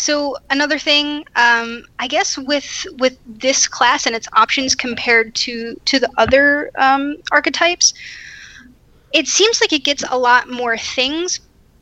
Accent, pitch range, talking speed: American, 225-275 Hz, 145 wpm